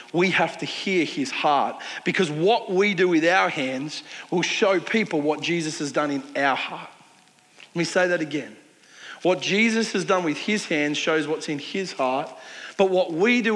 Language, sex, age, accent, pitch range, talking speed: English, male, 40-59, Australian, 150-185 Hz, 195 wpm